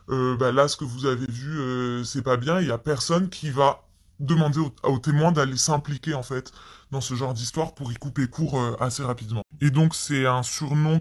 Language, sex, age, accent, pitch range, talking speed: French, female, 20-39, French, 125-150 Hz, 230 wpm